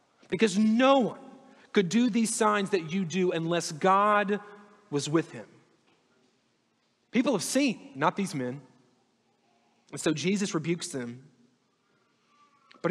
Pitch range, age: 180-235 Hz, 30-49